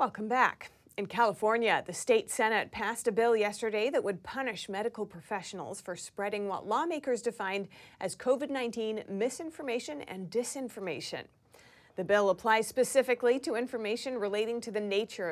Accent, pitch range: American, 200-255 Hz